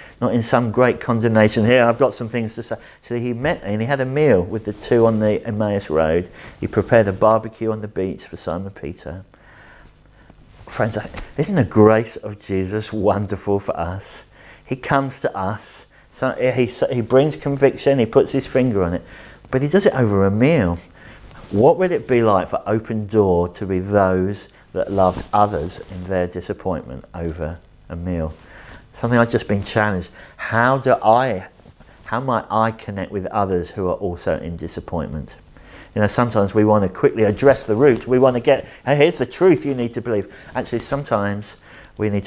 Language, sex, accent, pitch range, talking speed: English, male, British, 95-120 Hz, 185 wpm